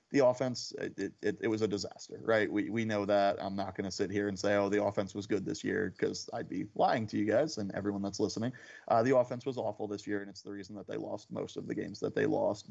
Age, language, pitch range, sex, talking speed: 30-49, English, 100-110 Hz, male, 285 wpm